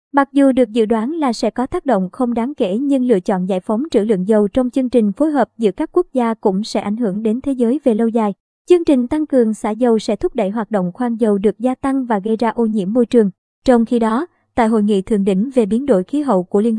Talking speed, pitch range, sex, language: 280 wpm, 215-270 Hz, male, Vietnamese